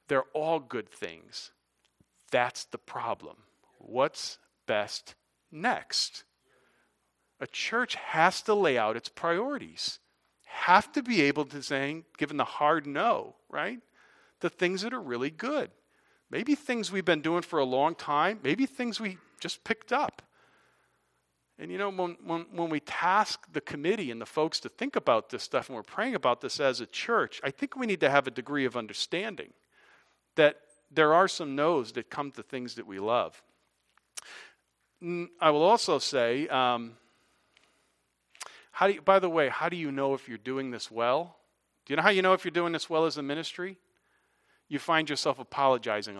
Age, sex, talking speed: 40-59, male, 175 wpm